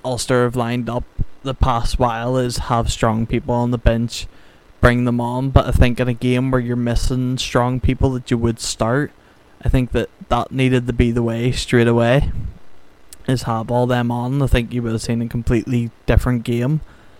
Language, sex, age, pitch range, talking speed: English, male, 20-39, 115-125 Hz, 200 wpm